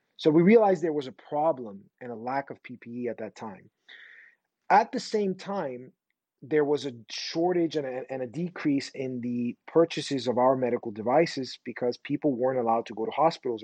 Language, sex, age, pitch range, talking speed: English, male, 30-49, 125-165 Hz, 185 wpm